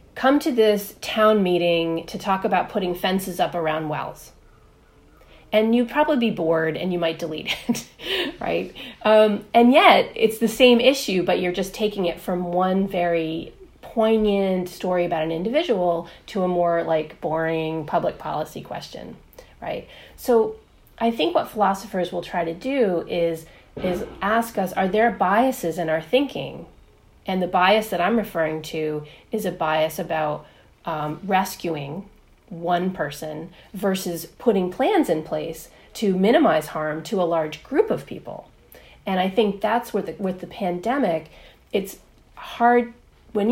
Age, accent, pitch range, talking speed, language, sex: 30-49, American, 165-220 Hz, 155 wpm, English, female